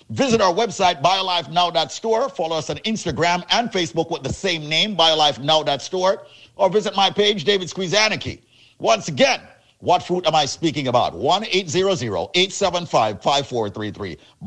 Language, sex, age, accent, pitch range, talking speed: English, male, 50-69, American, 145-185 Hz, 125 wpm